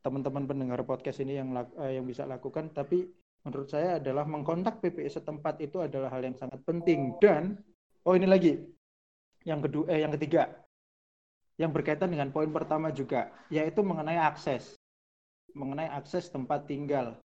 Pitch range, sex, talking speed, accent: 140-175 Hz, male, 150 wpm, native